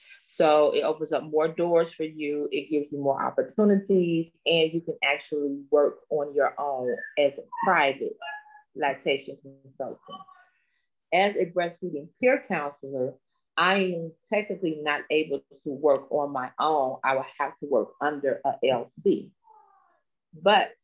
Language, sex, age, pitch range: English, female, 30-49, 145-190 Hz